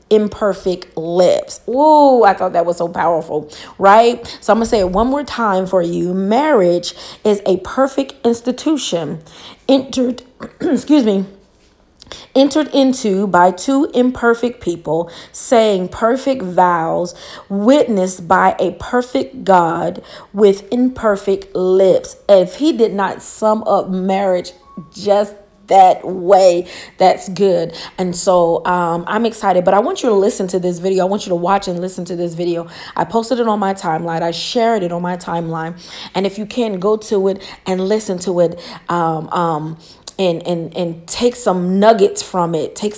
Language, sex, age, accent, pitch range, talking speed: English, female, 30-49, American, 180-220 Hz, 160 wpm